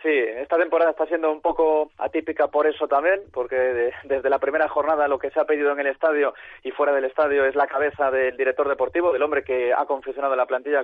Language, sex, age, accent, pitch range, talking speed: Spanish, male, 30-49, Spanish, 140-175 Hz, 235 wpm